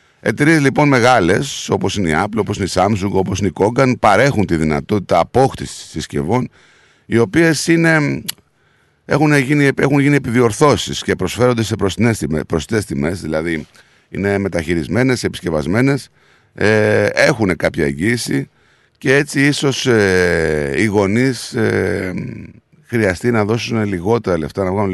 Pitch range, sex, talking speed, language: 85-115 Hz, male, 125 wpm, Greek